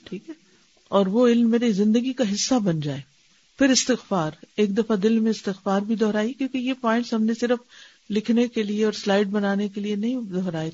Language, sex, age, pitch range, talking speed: Urdu, female, 50-69, 180-230 Hz, 200 wpm